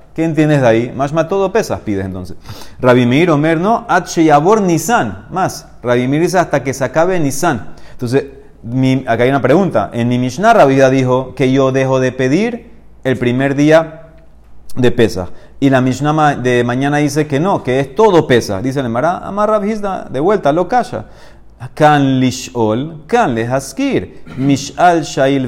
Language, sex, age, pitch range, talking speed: Spanish, male, 30-49, 125-175 Hz, 170 wpm